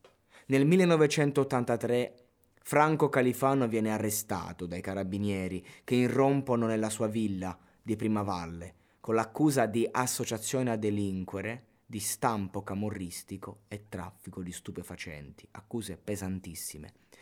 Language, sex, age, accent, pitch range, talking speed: Italian, male, 20-39, native, 95-120 Hz, 105 wpm